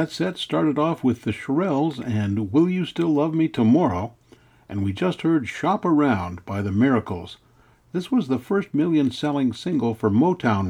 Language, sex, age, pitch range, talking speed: English, male, 60-79, 110-155 Hz, 180 wpm